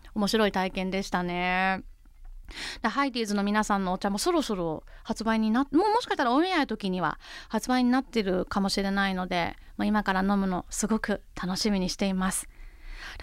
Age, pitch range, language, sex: 20-39, 210-280 Hz, Japanese, female